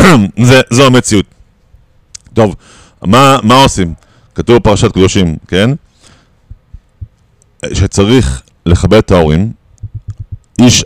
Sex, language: male, Hebrew